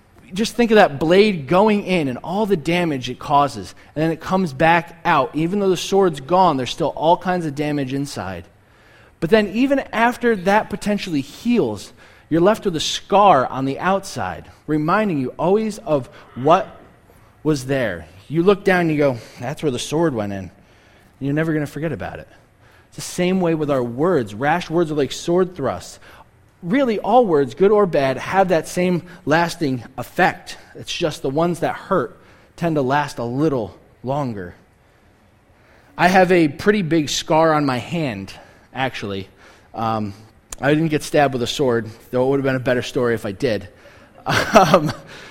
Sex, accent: male, American